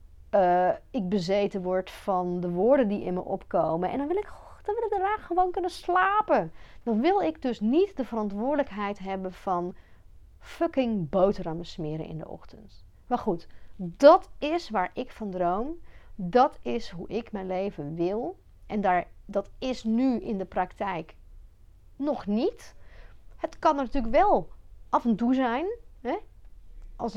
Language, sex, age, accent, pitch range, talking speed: Dutch, female, 40-59, Dutch, 175-230 Hz, 150 wpm